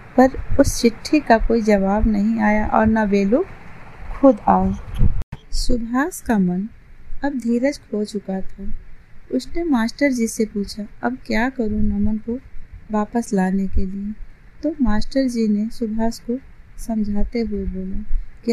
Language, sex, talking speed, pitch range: Hindi, female, 145 wpm, 200-250 Hz